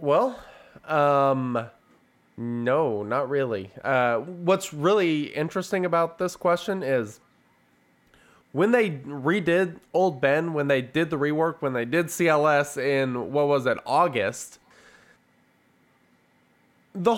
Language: English